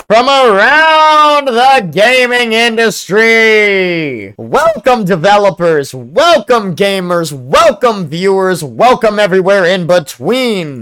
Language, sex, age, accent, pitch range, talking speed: English, male, 20-39, American, 130-175 Hz, 85 wpm